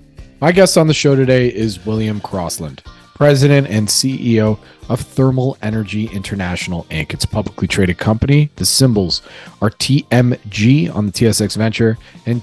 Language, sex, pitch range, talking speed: English, male, 105-130 Hz, 150 wpm